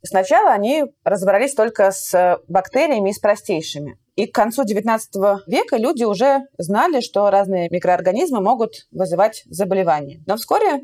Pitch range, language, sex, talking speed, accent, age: 185-235 Hz, Russian, female, 140 wpm, native, 20-39